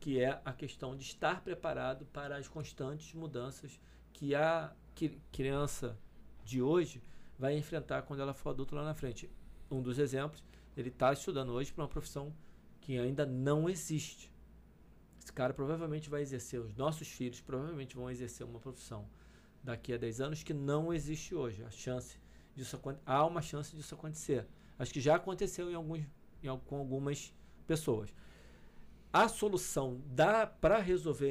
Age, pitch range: 40-59, 125-155 Hz